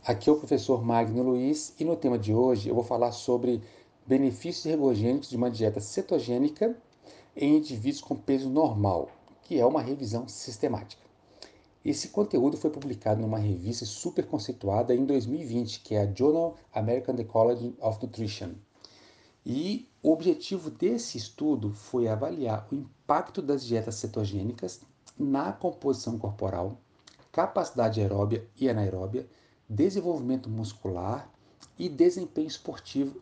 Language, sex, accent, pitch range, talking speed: Portuguese, male, Brazilian, 110-140 Hz, 130 wpm